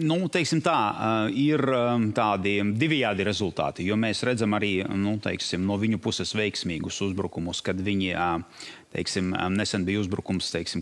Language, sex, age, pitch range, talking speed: English, male, 30-49, 100-120 Hz, 140 wpm